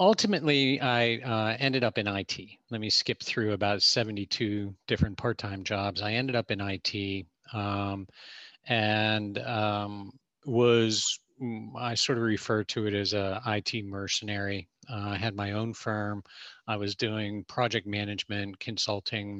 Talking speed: 145 wpm